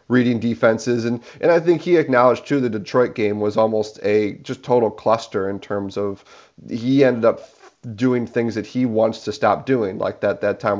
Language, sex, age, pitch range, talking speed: English, male, 30-49, 110-135 Hz, 200 wpm